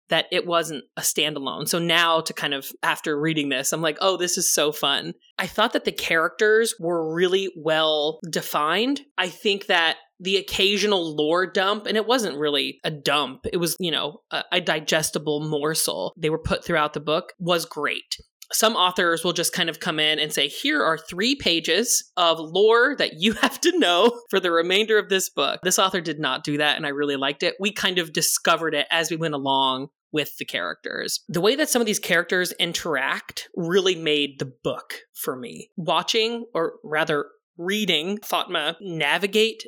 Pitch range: 155-200 Hz